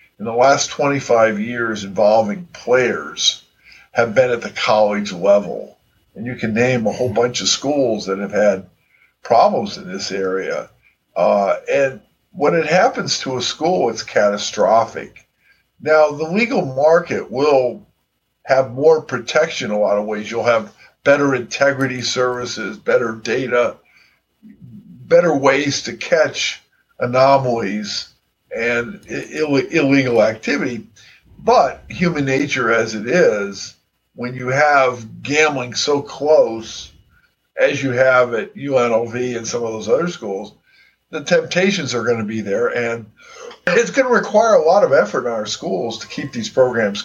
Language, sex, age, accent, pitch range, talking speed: English, male, 50-69, American, 110-155 Hz, 145 wpm